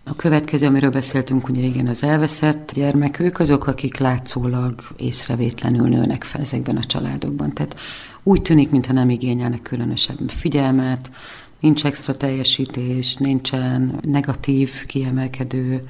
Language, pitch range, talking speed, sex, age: Hungarian, 130-145 Hz, 125 wpm, female, 40-59